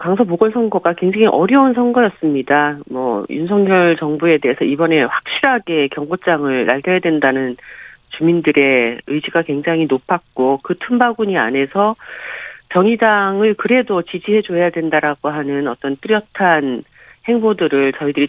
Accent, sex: native, female